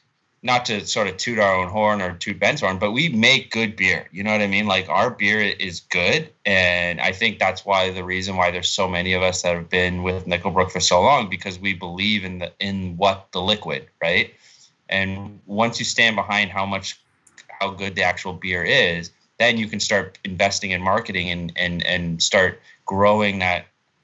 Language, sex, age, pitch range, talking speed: English, male, 20-39, 90-100 Hz, 210 wpm